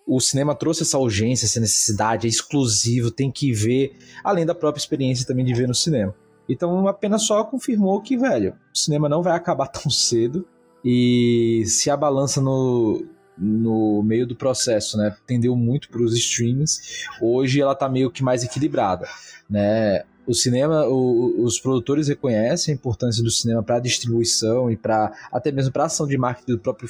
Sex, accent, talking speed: male, Brazilian, 180 wpm